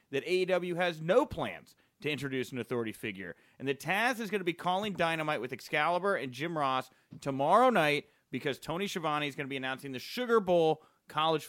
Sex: male